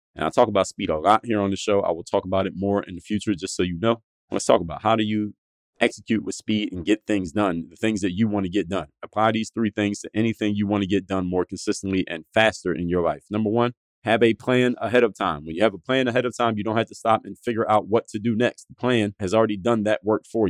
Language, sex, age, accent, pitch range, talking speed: English, male, 30-49, American, 100-120 Hz, 290 wpm